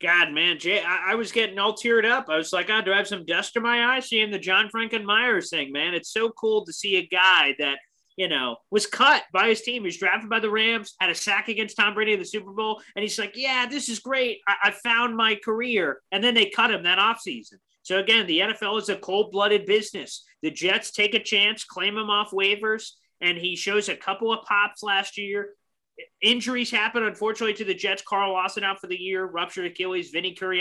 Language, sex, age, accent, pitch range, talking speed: English, male, 30-49, American, 160-210 Hz, 235 wpm